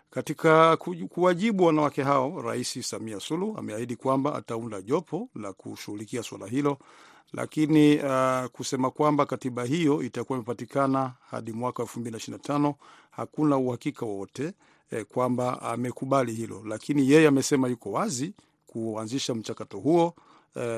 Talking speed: 125 wpm